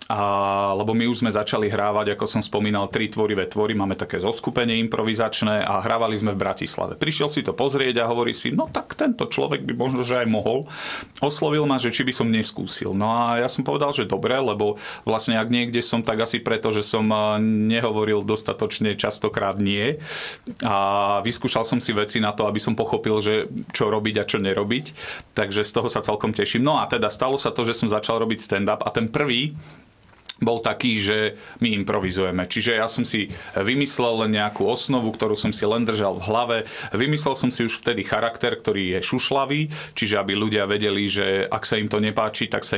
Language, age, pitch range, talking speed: Slovak, 40-59, 105-125 Hz, 200 wpm